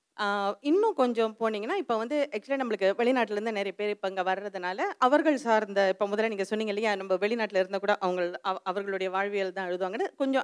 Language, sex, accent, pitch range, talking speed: Tamil, female, native, 190-245 Hz, 180 wpm